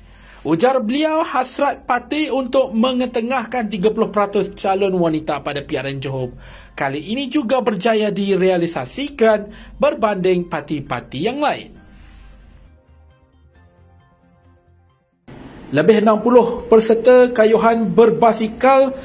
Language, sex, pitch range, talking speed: Malay, male, 160-255 Hz, 80 wpm